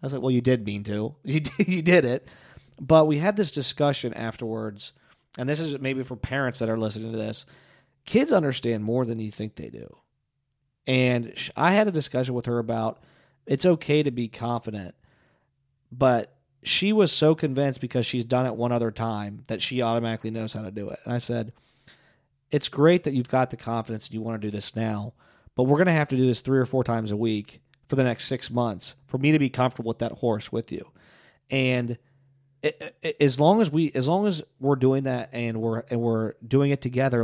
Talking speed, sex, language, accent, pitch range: 220 wpm, male, English, American, 115-140 Hz